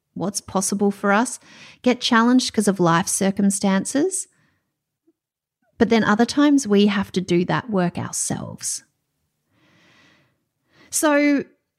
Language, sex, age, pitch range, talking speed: English, female, 30-49, 200-275 Hz, 110 wpm